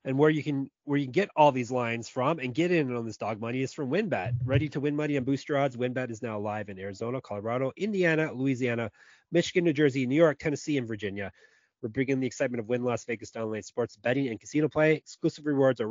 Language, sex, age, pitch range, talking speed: English, male, 30-49, 115-155 Hz, 240 wpm